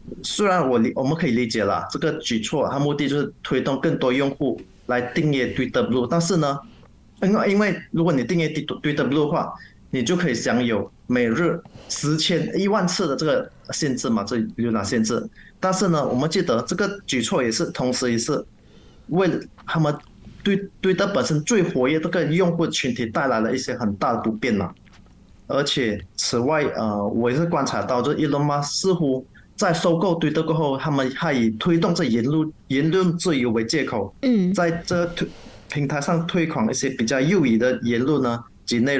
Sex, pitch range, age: male, 125-170 Hz, 20-39